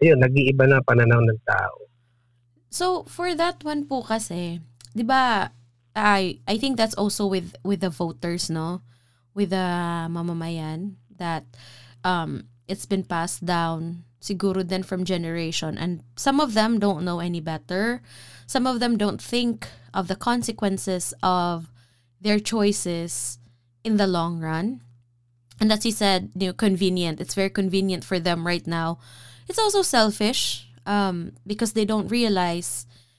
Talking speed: 150 wpm